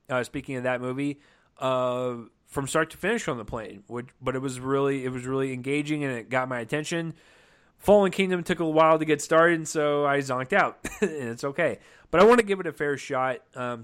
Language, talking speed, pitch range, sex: English, 235 wpm, 125-150 Hz, male